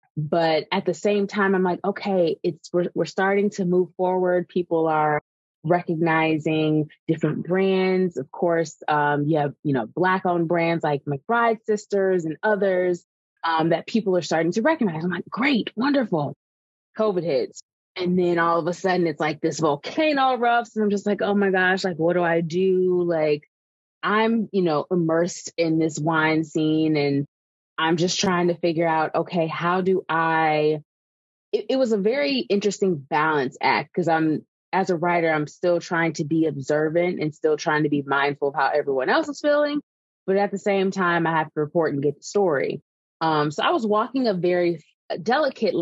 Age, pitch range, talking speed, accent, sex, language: 20-39, 155-195 Hz, 185 wpm, American, female, English